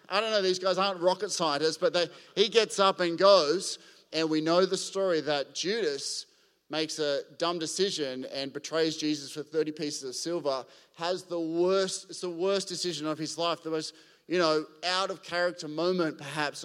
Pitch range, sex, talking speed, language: 150-185 Hz, male, 185 wpm, English